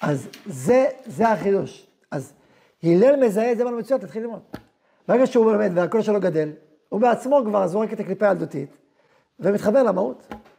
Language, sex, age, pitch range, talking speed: Hebrew, male, 40-59, 200-250 Hz, 160 wpm